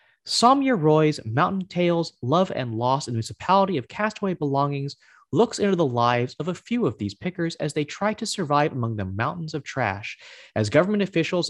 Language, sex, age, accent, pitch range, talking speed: English, male, 30-49, American, 125-190 Hz, 185 wpm